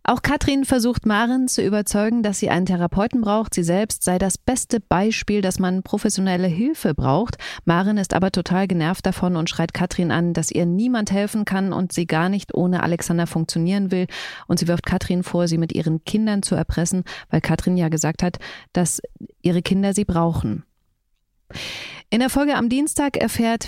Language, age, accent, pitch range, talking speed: German, 30-49, German, 170-215 Hz, 185 wpm